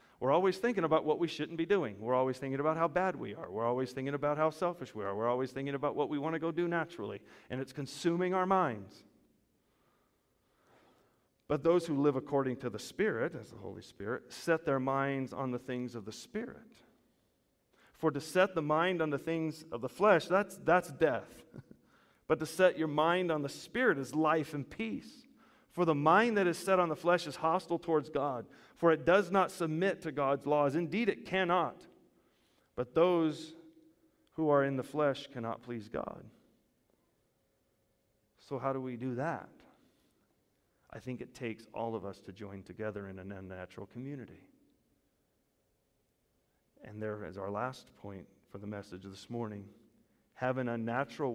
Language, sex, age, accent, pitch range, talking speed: English, male, 40-59, American, 115-165 Hz, 180 wpm